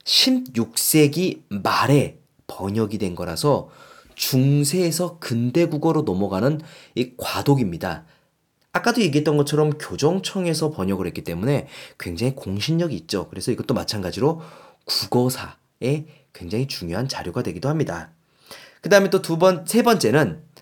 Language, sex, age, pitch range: Korean, male, 30-49, 115-165 Hz